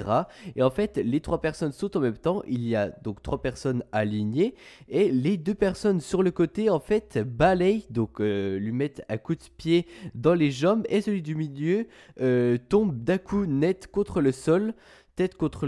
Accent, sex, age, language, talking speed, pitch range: French, male, 20-39, French, 200 wpm, 125-175 Hz